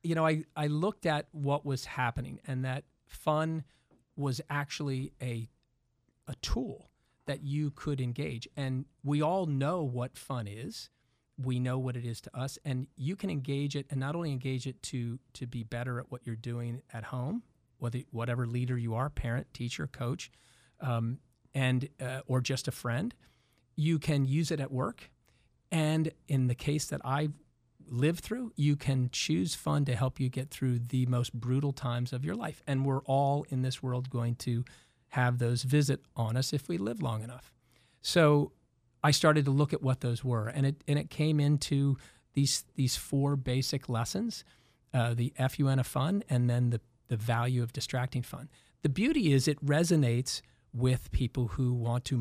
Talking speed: 185 wpm